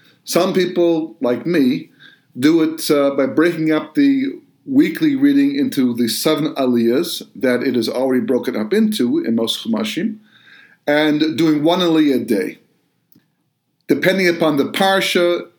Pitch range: 145-230 Hz